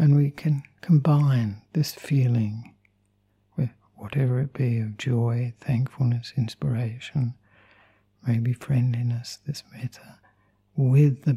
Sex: male